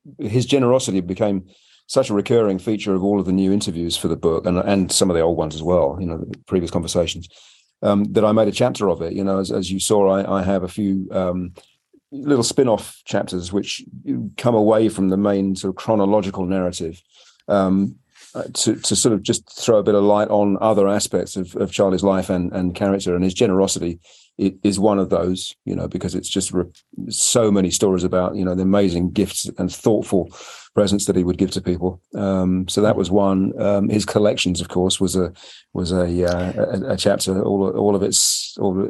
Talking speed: 215 wpm